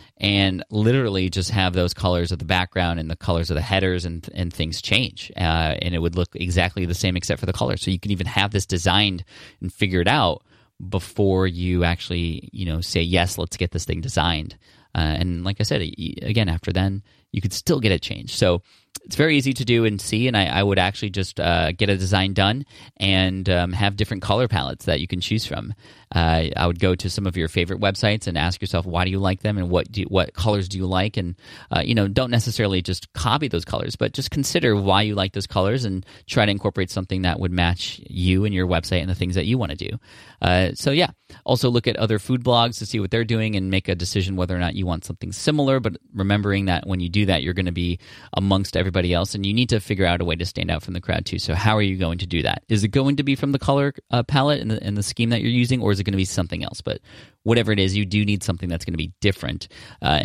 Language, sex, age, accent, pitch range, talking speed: English, male, 30-49, American, 90-105 Hz, 265 wpm